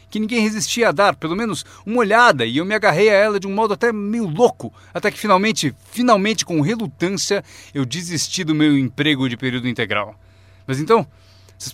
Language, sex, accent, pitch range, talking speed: Portuguese, male, Brazilian, 110-175 Hz, 195 wpm